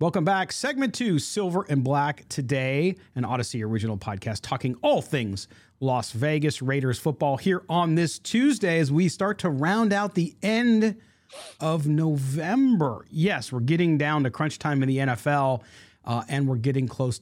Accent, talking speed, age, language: American, 165 wpm, 40-59, English